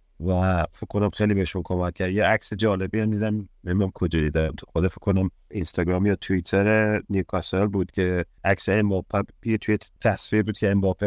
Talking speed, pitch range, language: 180 wpm, 90-105 Hz, Persian